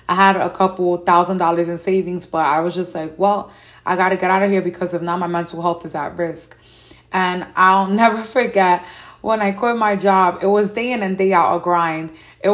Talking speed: 230 wpm